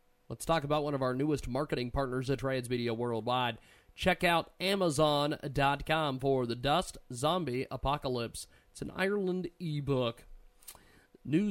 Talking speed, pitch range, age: 135 wpm, 125-155 Hz, 30-49